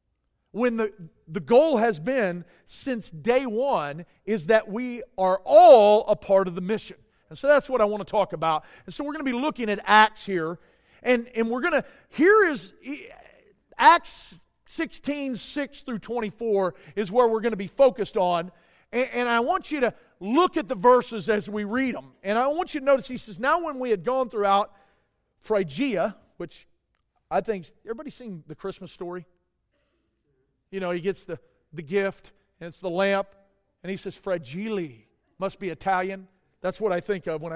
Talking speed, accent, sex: 190 wpm, American, male